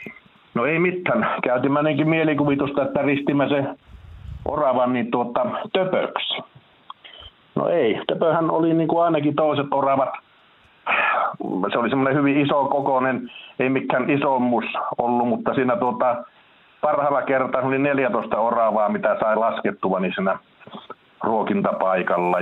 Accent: native